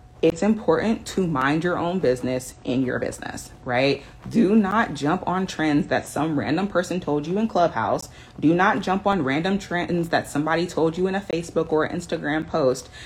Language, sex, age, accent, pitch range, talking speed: English, female, 30-49, American, 140-175 Hz, 185 wpm